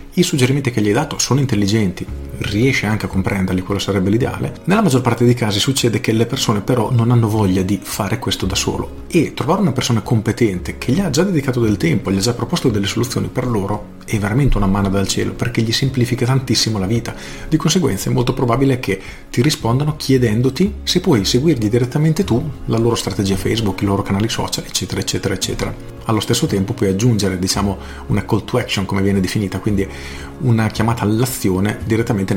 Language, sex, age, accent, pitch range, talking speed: Italian, male, 40-59, native, 100-120 Hz, 200 wpm